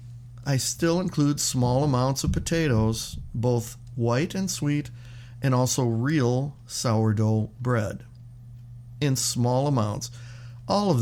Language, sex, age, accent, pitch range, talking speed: English, male, 50-69, American, 115-125 Hz, 115 wpm